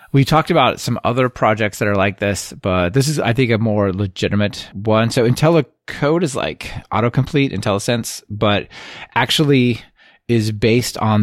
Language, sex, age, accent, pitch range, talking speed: English, male, 20-39, American, 100-130 Hz, 160 wpm